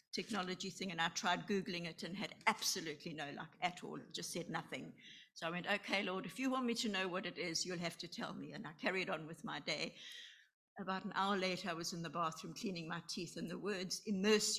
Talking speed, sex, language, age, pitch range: 245 wpm, female, English, 60-79, 175-220 Hz